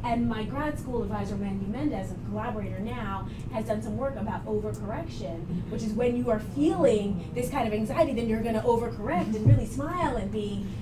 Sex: female